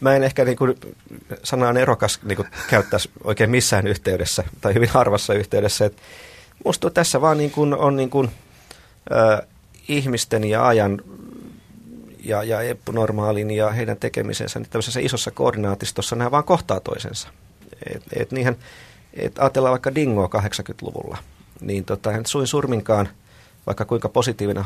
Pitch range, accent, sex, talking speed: 100-125 Hz, native, male, 130 wpm